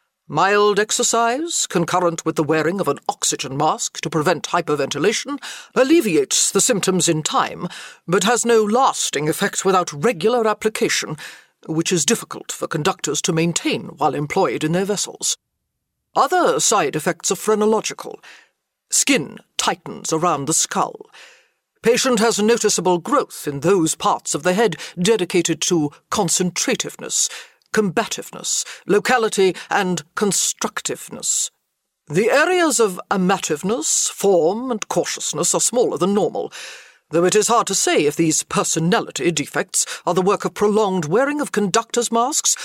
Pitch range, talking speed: 170-230 Hz, 135 wpm